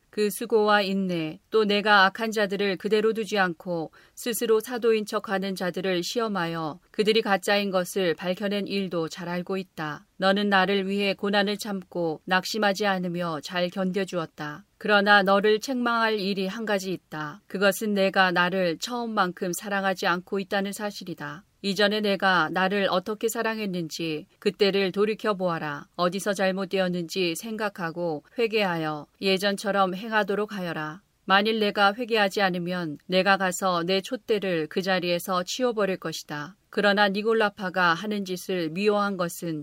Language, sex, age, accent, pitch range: Korean, female, 40-59, native, 180-210 Hz